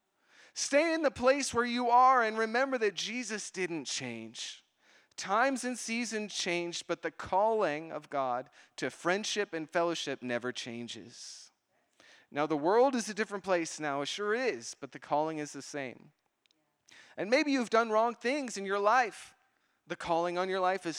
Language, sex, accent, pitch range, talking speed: English, male, American, 150-215 Hz, 170 wpm